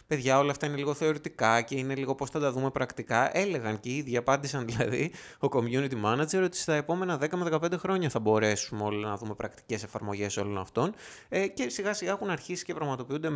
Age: 20-39